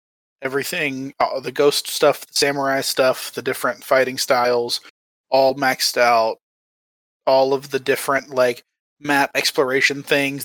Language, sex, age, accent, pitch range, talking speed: English, male, 20-39, American, 125-155 Hz, 130 wpm